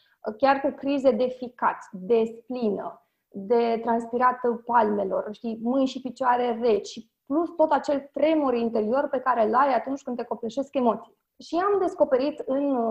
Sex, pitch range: female, 235-315 Hz